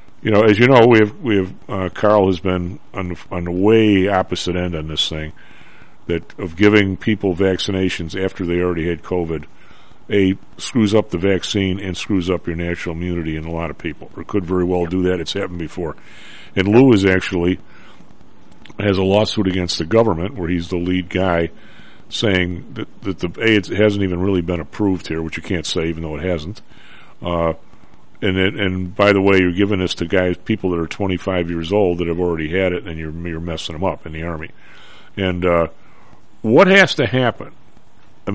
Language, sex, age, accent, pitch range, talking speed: English, male, 50-69, American, 85-100 Hz, 205 wpm